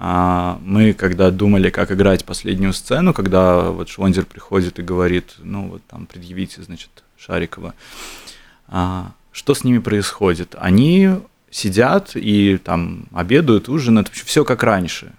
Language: Russian